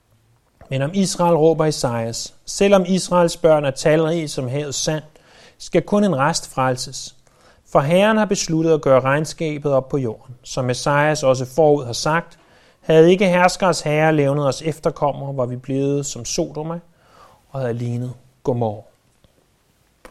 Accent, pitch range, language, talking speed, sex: native, 145-205 Hz, Danish, 150 wpm, male